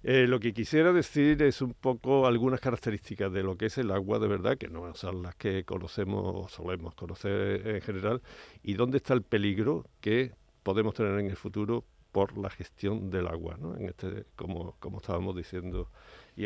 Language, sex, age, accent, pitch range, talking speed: Spanish, male, 50-69, Argentinian, 95-125 Hz, 195 wpm